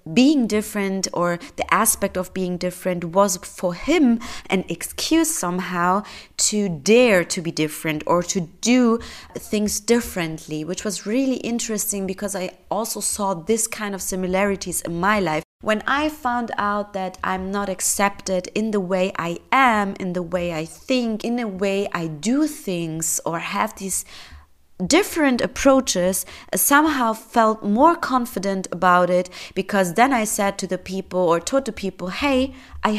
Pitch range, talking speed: 180-225 Hz, 160 wpm